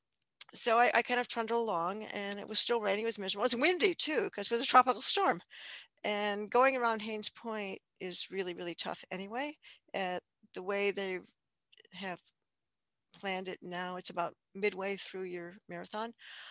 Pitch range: 185-225 Hz